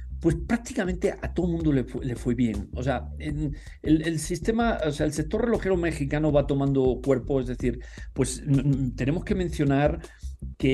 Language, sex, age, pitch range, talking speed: English, male, 40-59, 130-165 Hz, 195 wpm